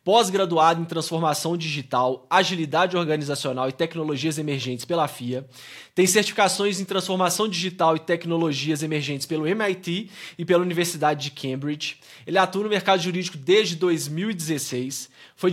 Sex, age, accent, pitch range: male, 20-39, Brazilian, 145-180 Hz